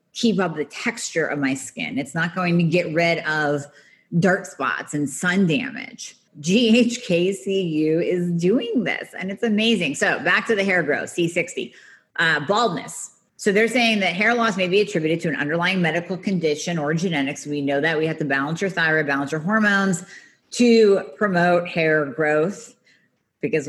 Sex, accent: female, American